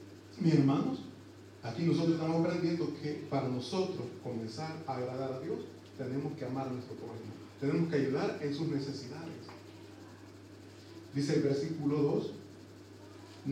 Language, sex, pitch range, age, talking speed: Italian, male, 110-150 Hz, 40-59, 135 wpm